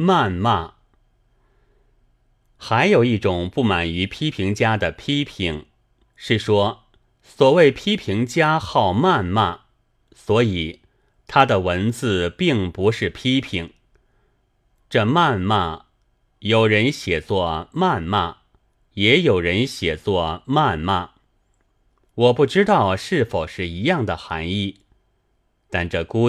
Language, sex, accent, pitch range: Chinese, male, native, 95-130 Hz